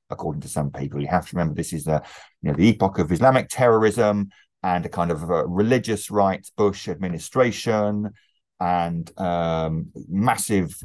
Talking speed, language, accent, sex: 165 wpm, English, British, male